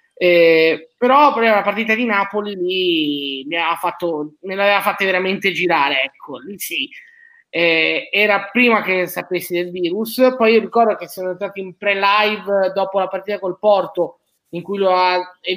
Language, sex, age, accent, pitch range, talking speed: Italian, male, 20-39, native, 175-210 Hz, 155 wpm